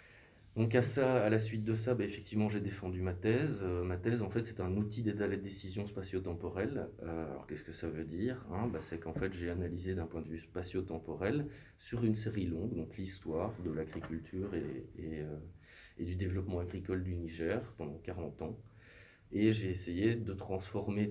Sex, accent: male, French